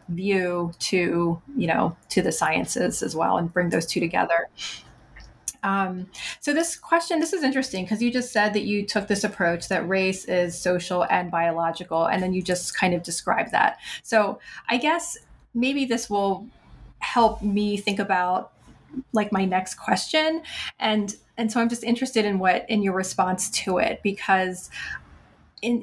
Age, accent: 30-49, American